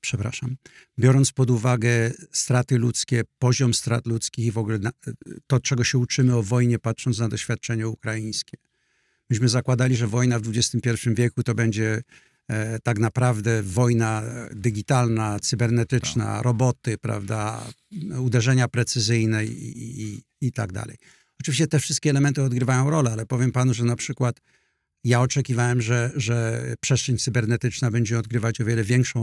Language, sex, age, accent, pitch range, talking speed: Polish, male, 50-69, native, 115-125 Hz, 140 wpm